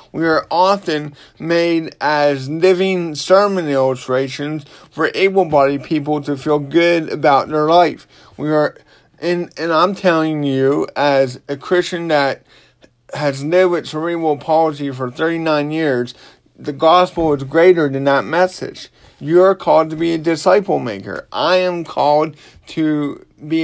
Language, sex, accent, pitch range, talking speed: English, male, American, 145-175 Hz, 145 wpm